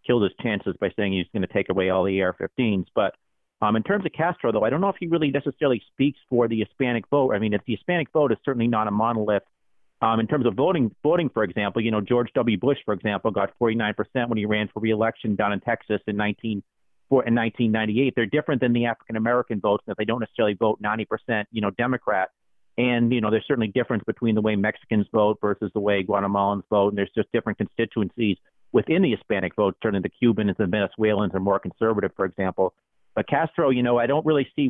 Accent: American